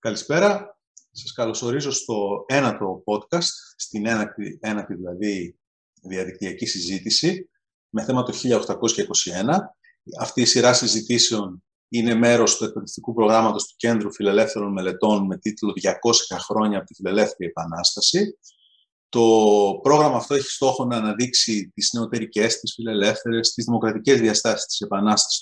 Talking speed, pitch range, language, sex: 125 wpm, 110-175 Hz, Greek, male